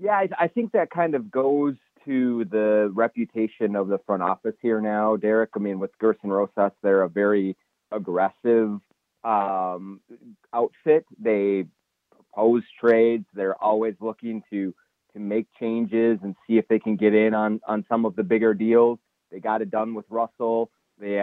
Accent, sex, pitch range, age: American, male, 105-120 Hz, 30-49